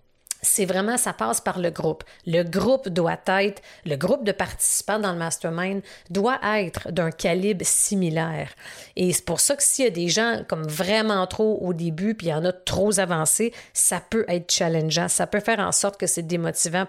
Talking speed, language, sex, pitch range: 205 wpm, French, female, 170-215 Hz